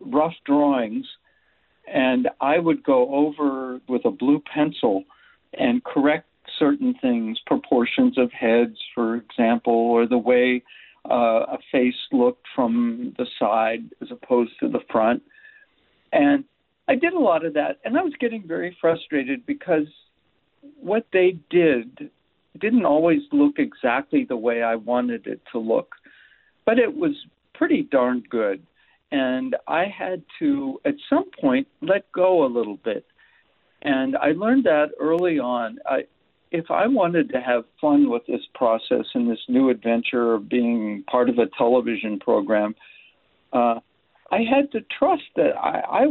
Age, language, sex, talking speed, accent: 60-79, English, male, 150 wpm, American